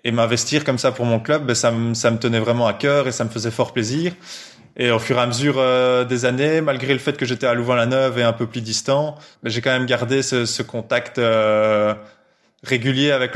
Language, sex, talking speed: French, male, 245 wpm